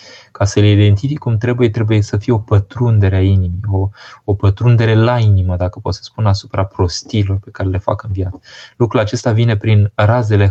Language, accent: Romanian, native